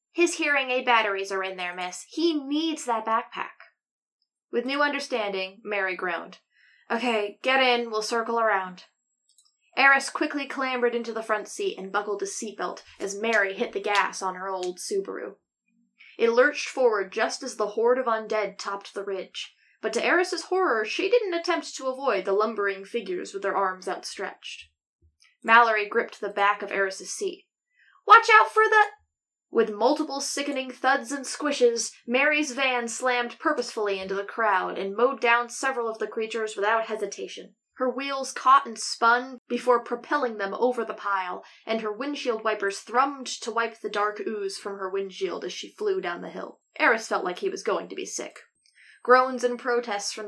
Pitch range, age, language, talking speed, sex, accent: 205-270 Hz, 10-29, English, 175 wpm, female, American